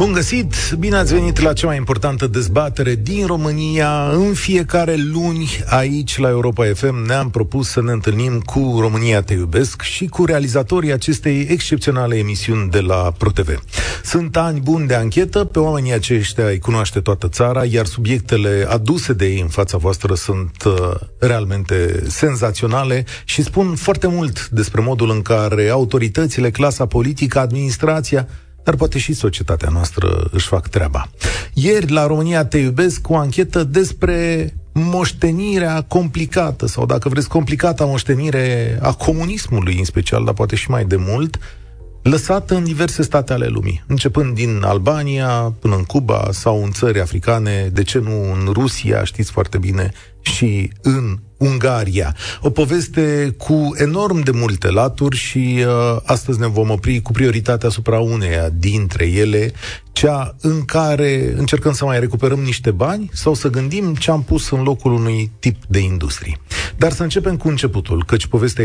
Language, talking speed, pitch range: Romanian, 160 wpm, 100-150 Hz